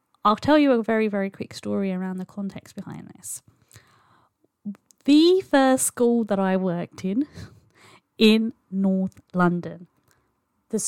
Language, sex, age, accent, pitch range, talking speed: English, female, 20-39, British, 185-235 Hz, 130 wpm